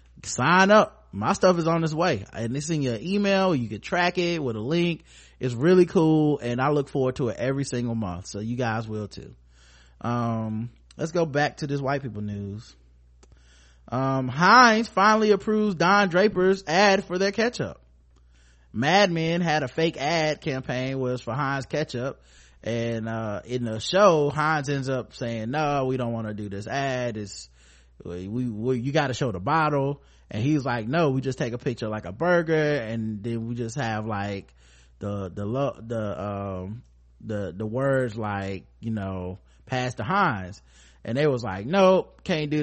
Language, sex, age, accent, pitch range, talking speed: English, male, 20-39, American, 100-155 Hz, 185 wpm